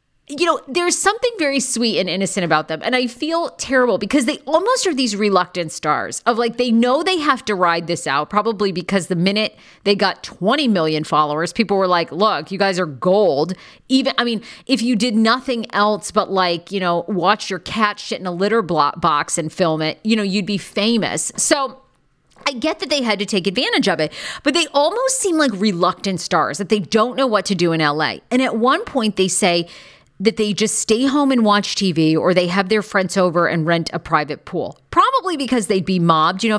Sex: female